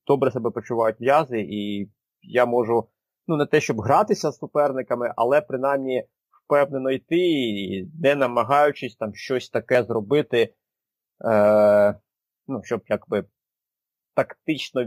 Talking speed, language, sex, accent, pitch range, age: 120 wpm, Ukrainian, male, native, 110-145 Hz, 30-49